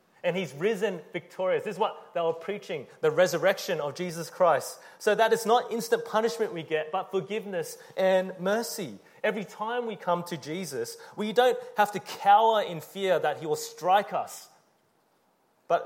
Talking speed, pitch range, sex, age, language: 175 wpm, 140-215 Hz, male, 30-49, English